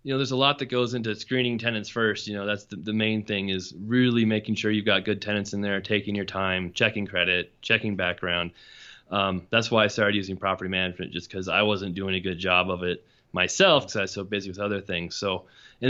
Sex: male